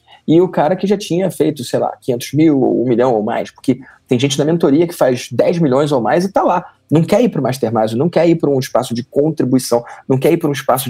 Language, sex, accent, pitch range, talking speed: Portuguese, male, Brazilian, 120-155 Hz, 275 wpm